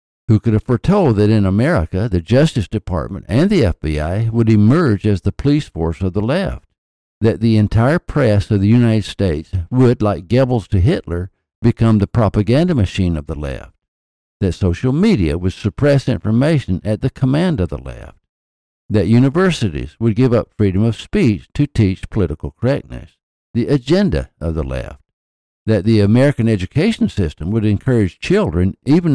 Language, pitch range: English, 85-120 Hz